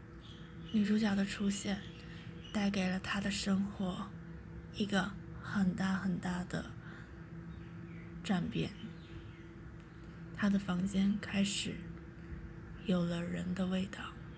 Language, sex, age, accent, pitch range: Chinese, female, 20-39, native, 180-200 Hz